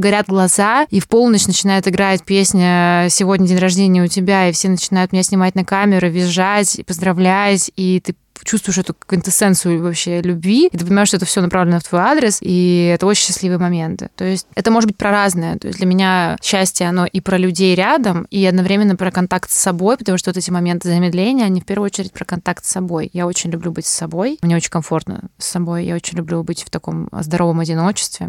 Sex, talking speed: female, 215 wpm